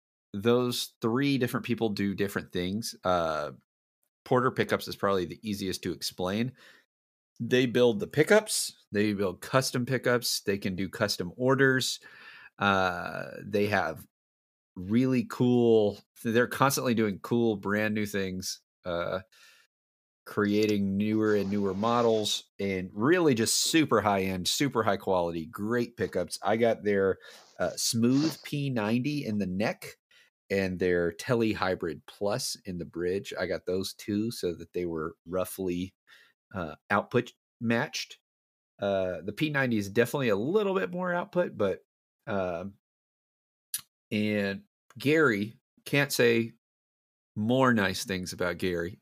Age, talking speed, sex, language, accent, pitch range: 30-49, 130 wpm, male, English, American, 95-120 Hz